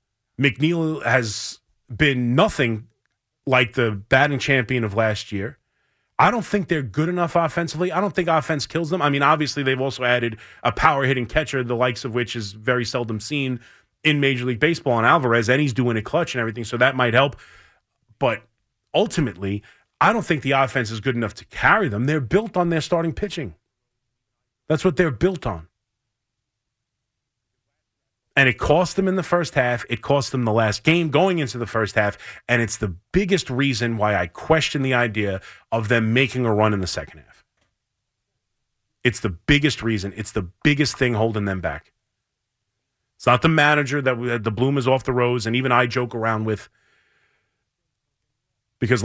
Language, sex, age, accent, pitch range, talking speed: English, male, 30-49, American, 110-140 Hz, 185 wpm